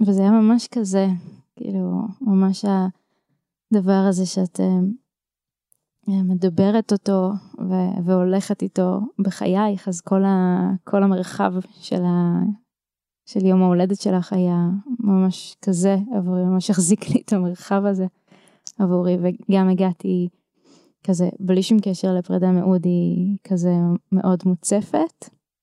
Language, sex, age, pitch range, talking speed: Hebrew, female, 20-39, 180-205 Hz, 110 wpm